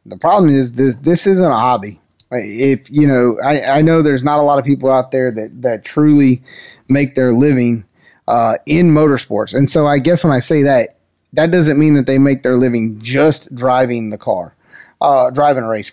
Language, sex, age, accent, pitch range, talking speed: English, male, 30-49, American, 125-150 Hz, 205 wpm